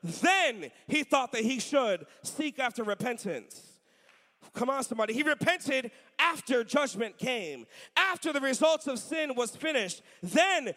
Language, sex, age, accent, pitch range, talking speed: English, male, 30-49, American, 270-360 Hz, 140 wpm